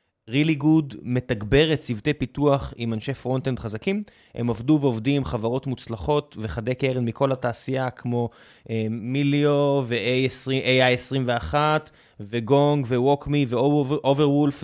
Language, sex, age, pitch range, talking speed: Hebrew, male, 20-39, 120-145 Hz, 115 wpm